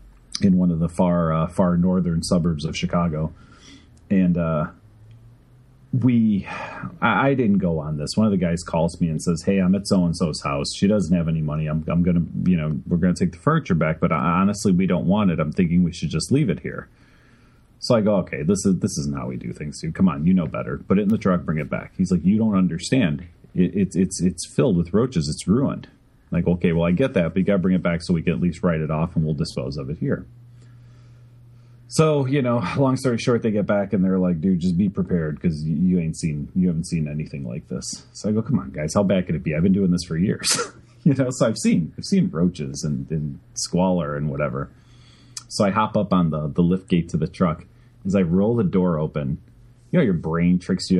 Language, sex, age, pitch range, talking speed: English, male, 30-49, 80-120 Hz, 250 wpm